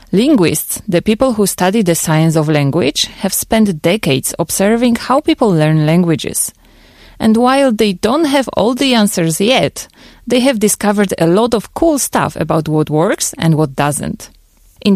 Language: Korean